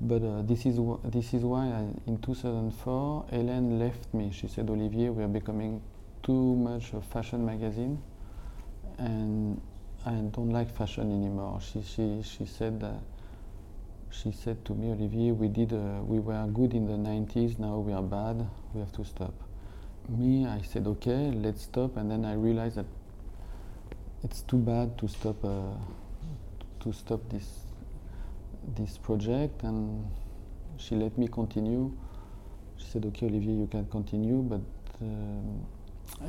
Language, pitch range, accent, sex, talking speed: English, 100-120 Hz, French, male, 155 wpm